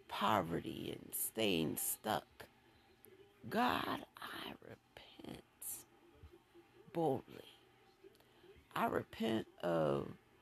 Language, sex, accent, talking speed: English, female, American, 65 wpm